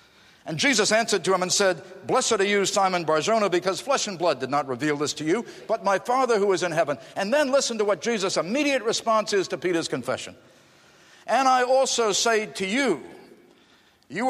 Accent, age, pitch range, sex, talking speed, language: American, 60-79, 190-270 Hz, male, 200 wpm, English